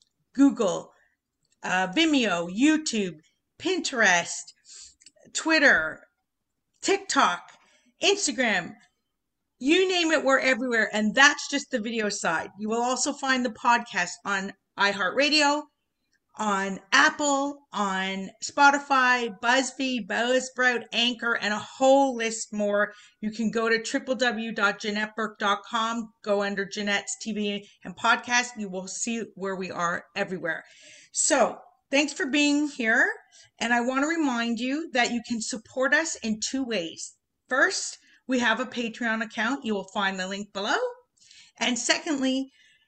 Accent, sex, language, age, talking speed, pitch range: American, female, English, 40-59, 125 wpm, 210-275 Hz